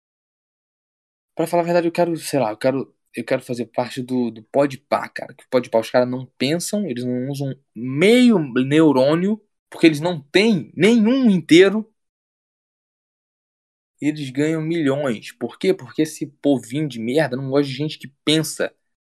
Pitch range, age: 120-160 Hz, 20-39